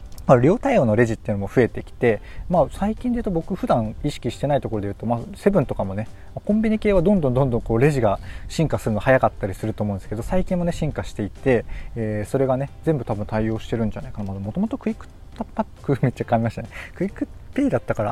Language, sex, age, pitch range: Japanese, male, 20-39, 105-145 Hz